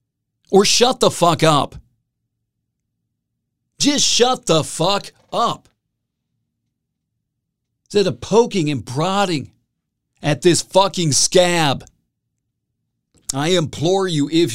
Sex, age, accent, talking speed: male, 50-69, American, 95 wpm